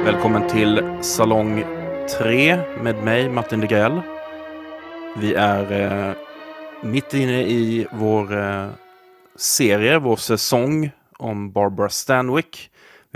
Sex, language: male, Swedish